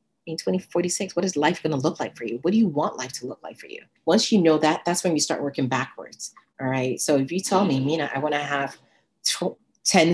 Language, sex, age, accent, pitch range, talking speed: English, female, 40-59, American, 135-165 Hz, 260 wpm